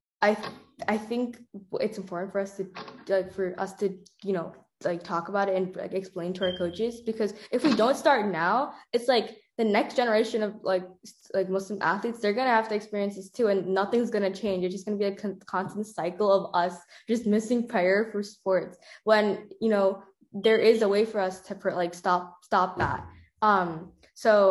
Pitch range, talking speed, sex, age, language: 185-215 Hz, 205 wpm, female, 10-29, English